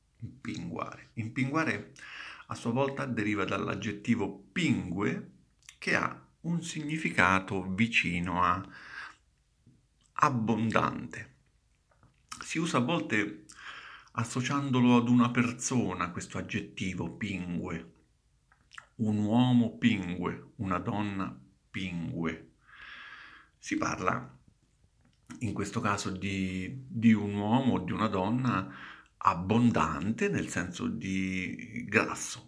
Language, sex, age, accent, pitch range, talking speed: Italian, male, 50-69, native, 90-120 Hz, 90 wpm